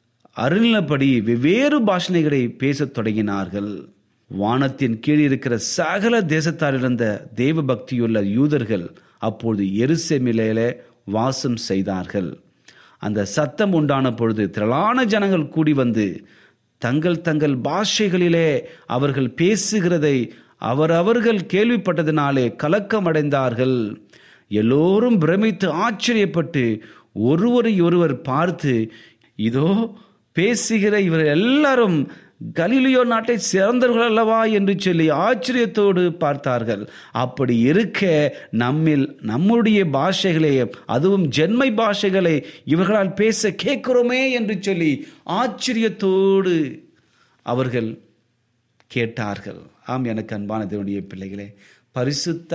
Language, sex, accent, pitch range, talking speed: Tamil, male, native, 120-195 Hz, 85 wpm